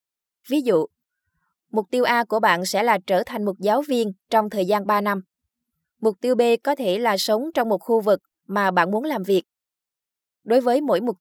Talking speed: 210 wpm